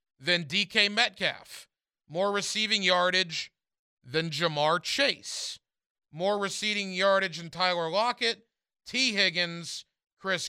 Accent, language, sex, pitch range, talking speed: American, English, male, 170-215 Hz, 105 wpm